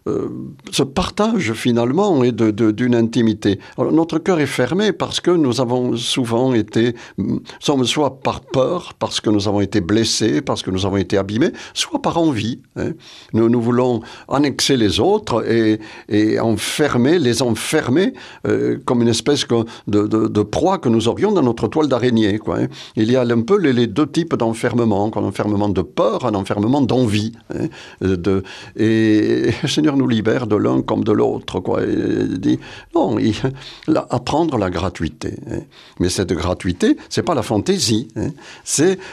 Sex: male